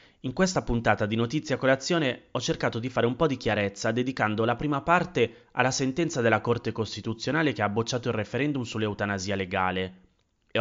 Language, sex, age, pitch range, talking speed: Italian, male, 30-49, 100-135 Hz, 175 wpm